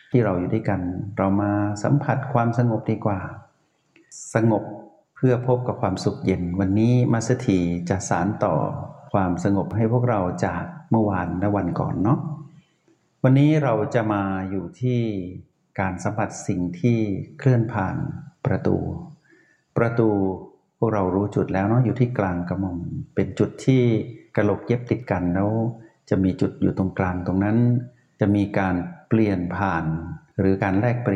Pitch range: 95-125 Hz